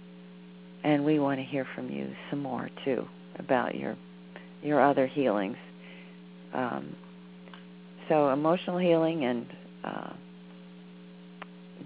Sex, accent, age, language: female, American, 40-59, English